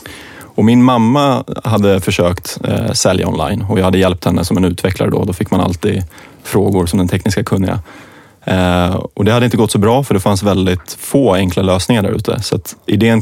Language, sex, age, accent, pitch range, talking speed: English, male, 30-49, Swedish, 95-110 Hz, 210 wpm